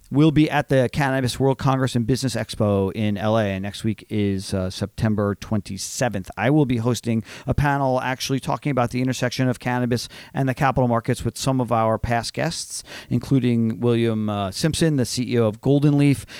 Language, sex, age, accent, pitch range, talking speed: English, male, 40-59, American, 110-135 Hz, 185 wpm